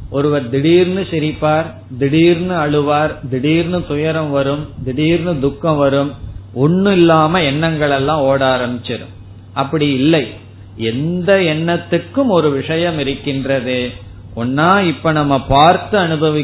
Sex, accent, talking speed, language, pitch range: male, native, 70 wpm, Tamil, 115-155 Hz